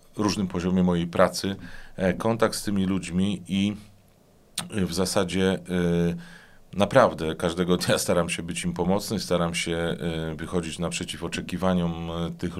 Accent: native